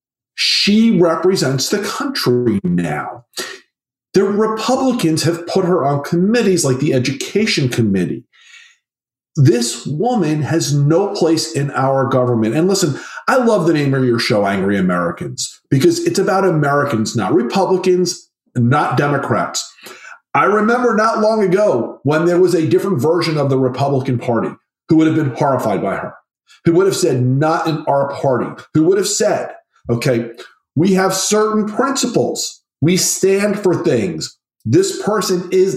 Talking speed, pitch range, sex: 150 wpm, 140-215 Hz, male